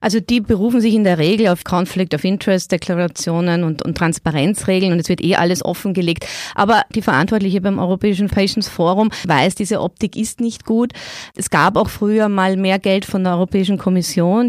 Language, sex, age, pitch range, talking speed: German, female, 30-49, 170-200 Hz, 180 wpm